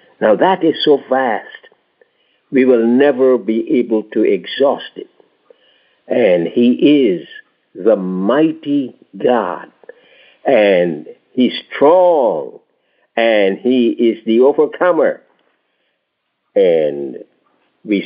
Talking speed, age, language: 95 wpm, 60-79, English